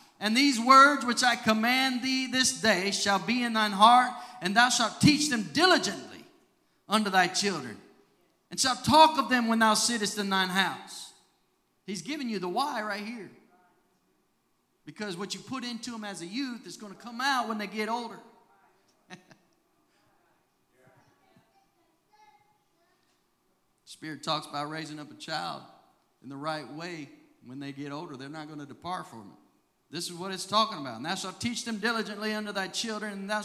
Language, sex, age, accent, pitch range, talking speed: English, male, 40-59, American, 180-240 Hz, 175 wpm